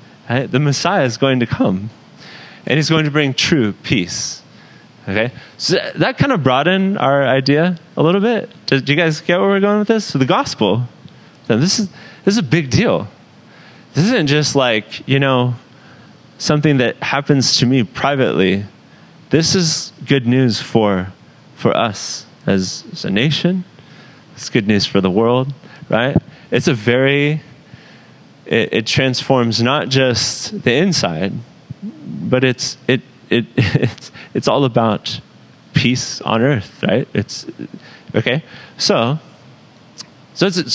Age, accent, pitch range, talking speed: 30-49, American, 125-165 Hz, 145 wpm